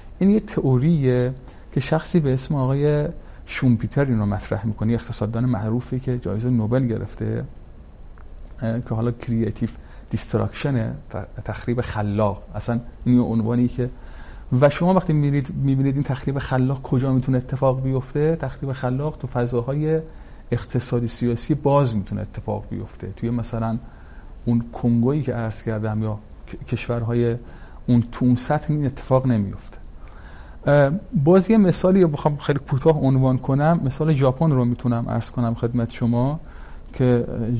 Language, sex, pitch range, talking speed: Persian, male, 110-140 Hz, 130 wpm